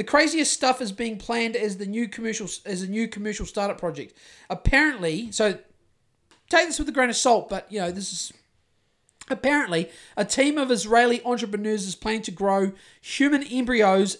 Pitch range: 180-220 Hz